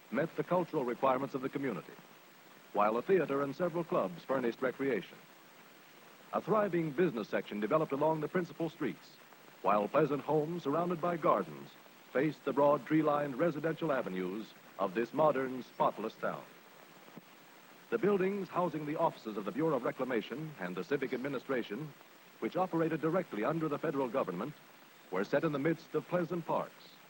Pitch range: 135-170 Hz